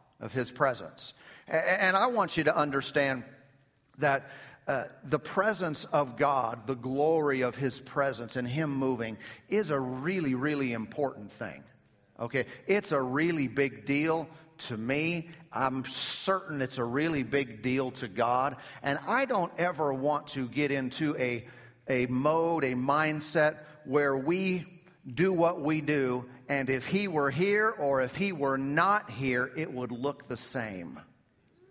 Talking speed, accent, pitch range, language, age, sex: 155 wpm, American, 140-230 Hz, English, 50-69, male